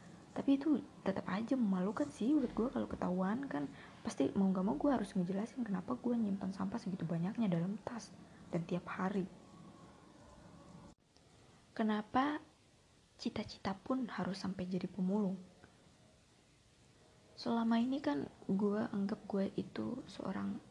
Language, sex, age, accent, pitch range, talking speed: Indonesian, female, 20-39, native, 185-220 Hz, 130 wpm